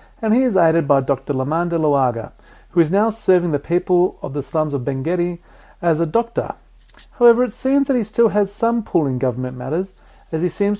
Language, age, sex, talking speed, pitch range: English, 40-59, male, 205 wpm, 135-185 Hz